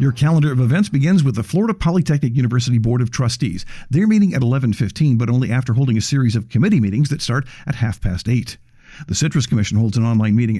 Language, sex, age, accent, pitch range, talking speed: English, male, 50-69, American, 115-150 Hz, 220 wpm